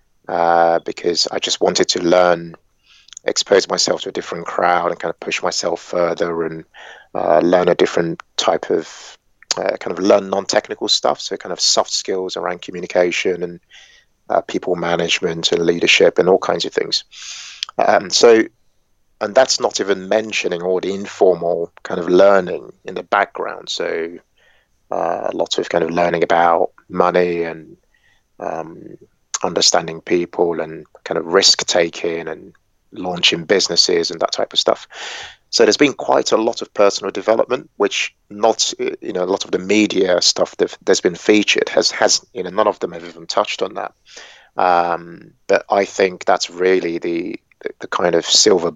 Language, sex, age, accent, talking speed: English, male, 30-49, British, 170 wpm